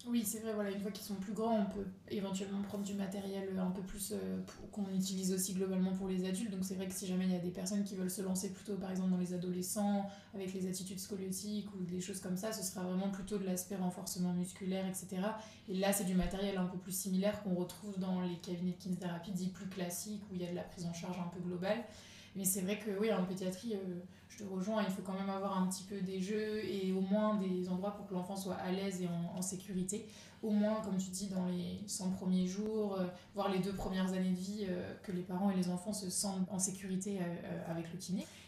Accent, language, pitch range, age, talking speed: French, French, 185-210 Hz, 20-39, 255 wpm